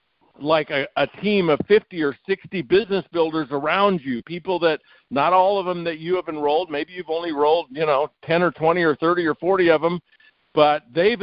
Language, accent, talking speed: English, American, 210 wpm